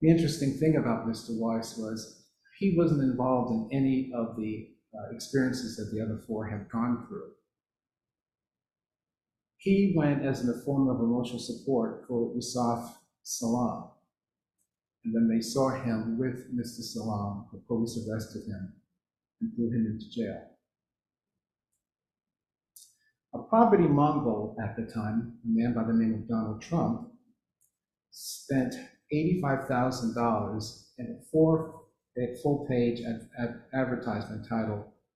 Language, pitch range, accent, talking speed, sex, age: English, 115-145 Hz, American, 125 wpm, male, 50-69